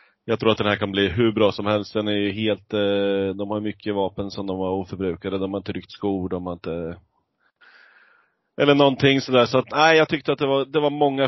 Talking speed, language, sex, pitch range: 250 wpm, Swedish, male, 105-125 Hz